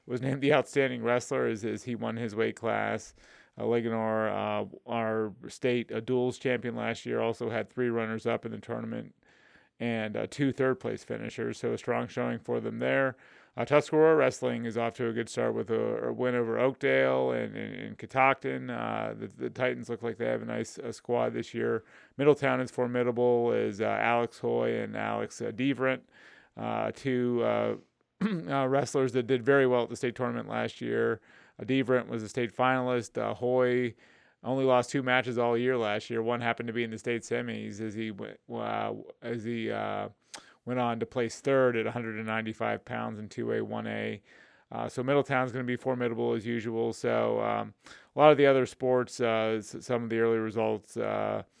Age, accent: 30-49, American